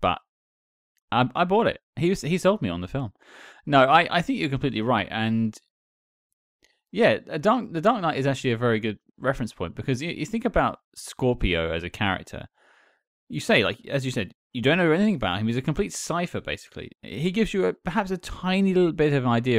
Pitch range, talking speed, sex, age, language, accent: 100-145 Hz, 220 wpm, male, 30-49, English, British